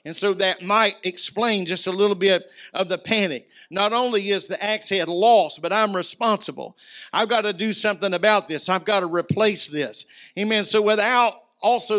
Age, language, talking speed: 50-69, English, 190 wpm